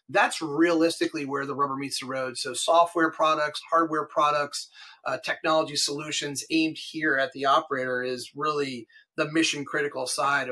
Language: English